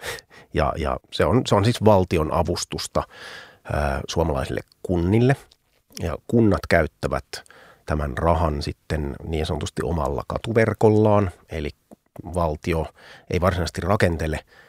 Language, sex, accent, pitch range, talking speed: Finnish, male, native, 80-105 Hz, 95 wpm